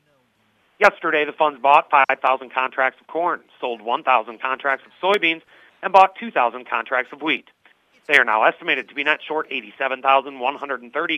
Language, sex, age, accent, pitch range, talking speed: English, male, 40-59, American, 125-165 Hz, 150 wpm